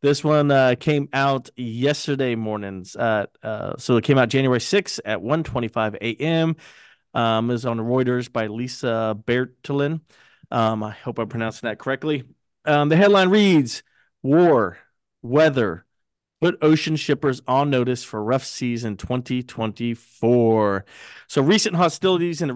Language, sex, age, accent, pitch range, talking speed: English, male, 30-49, American, 115-145 Hz, 145 wpm